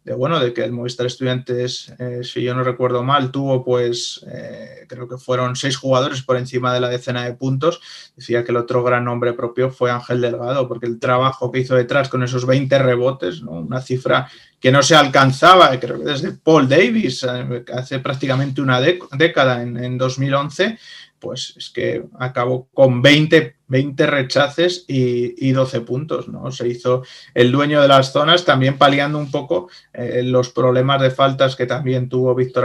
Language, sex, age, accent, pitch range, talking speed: Spanish, male, 20-39, Spanish, 125-140 Hz, 180 wpm